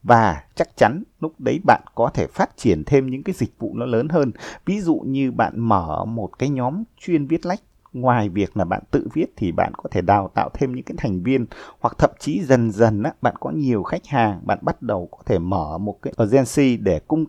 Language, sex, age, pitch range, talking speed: Vietnamese, male, 30-49, 105-150 Hz, 235 wpm